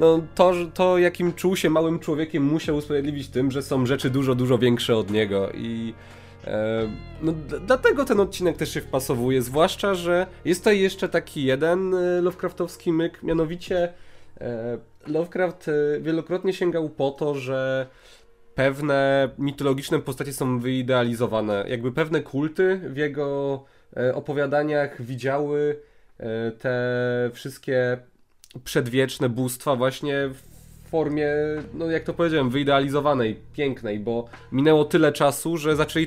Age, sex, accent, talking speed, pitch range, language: 20-39, male, native, 135 wpm, 125-165 Hz, Polish